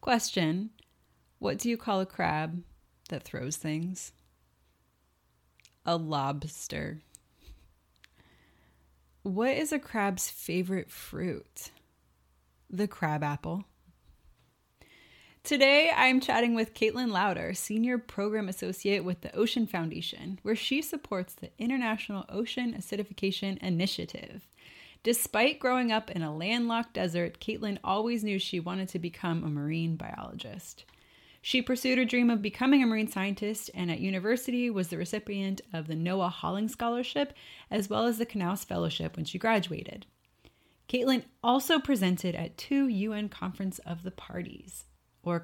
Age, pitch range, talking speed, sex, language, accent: 20-39, 160-230 Hz, 130 wpm, female, English, American